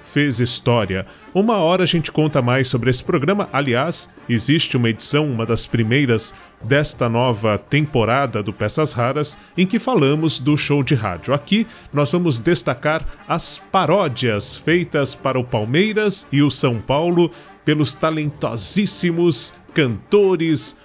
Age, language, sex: 30-49, Portuguese, male